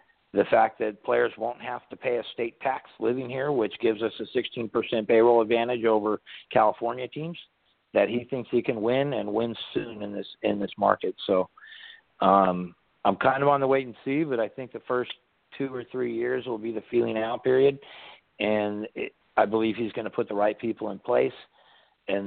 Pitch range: 105-130 Hz